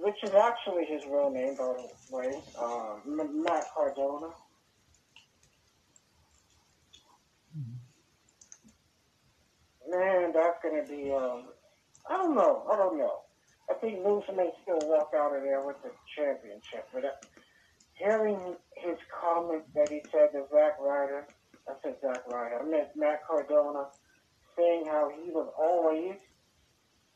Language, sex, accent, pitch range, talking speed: English, male, American, 140-180 Hz, 135 wpm